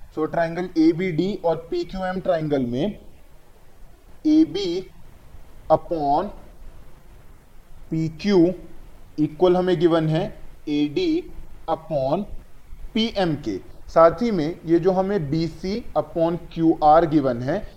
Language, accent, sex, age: Hindi, native, male, 30-49